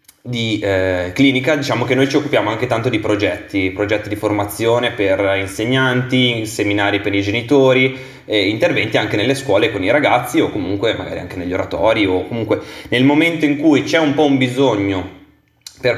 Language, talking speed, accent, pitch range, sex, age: Italian, 175 wpm, native, 105-130 Hz, male, 20-39